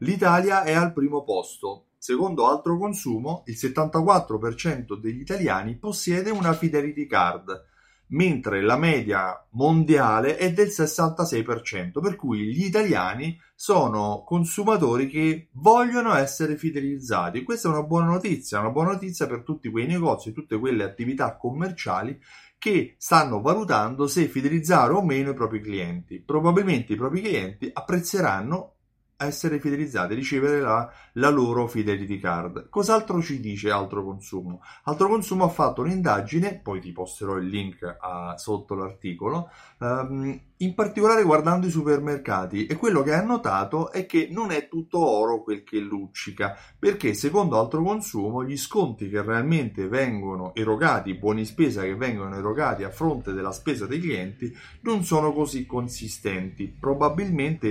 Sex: male